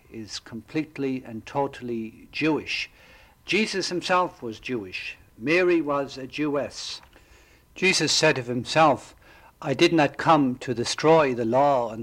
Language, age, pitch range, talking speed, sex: English, 60-79, 125-160 Hz, 130 wpm, male